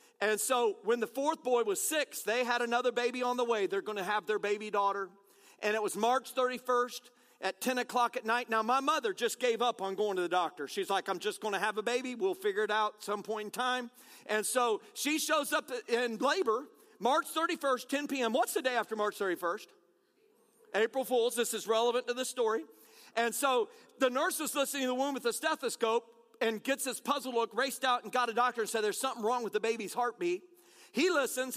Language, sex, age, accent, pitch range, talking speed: English, male, 40-59, American, 220-265 Hz, 230 wpm